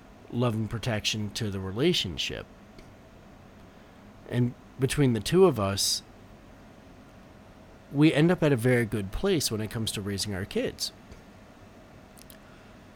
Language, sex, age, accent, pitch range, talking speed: English, male, 40-59, American, 100-140 Hz, 130 wpm